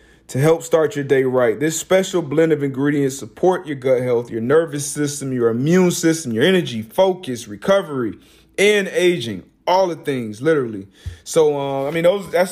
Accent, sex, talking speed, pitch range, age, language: American, male, 175 wpm, 120-165 Hz, 30-49, English